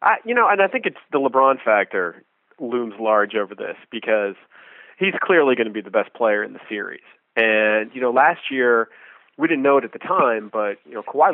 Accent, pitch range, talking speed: American, 105-130 Hz, 215 wpm